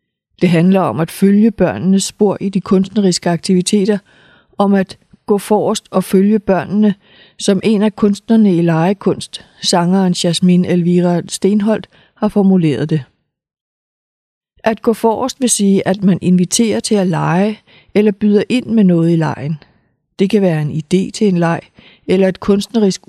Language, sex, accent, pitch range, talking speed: Danish, female, native, 175-210 Hz, 155 wpm